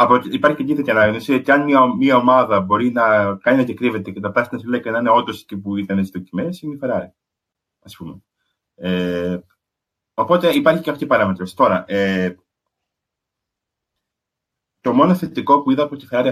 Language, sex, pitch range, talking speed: Greek, male, 100-140 Hz, 175 wpm